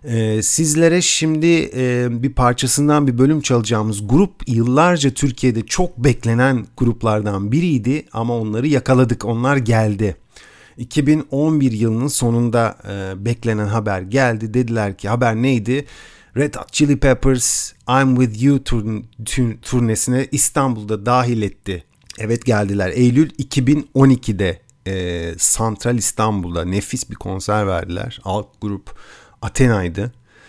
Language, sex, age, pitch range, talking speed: Turkish, male, 50-69, 105-130 Hz, 110 wpm